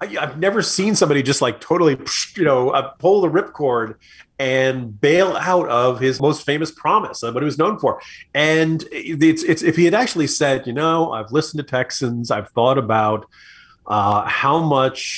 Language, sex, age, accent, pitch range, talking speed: English, male, 30-49, American, 115-160 Hz, 180 wpm